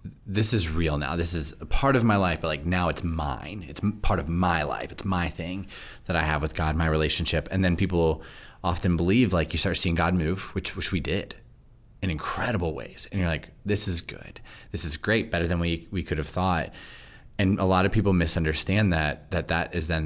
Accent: American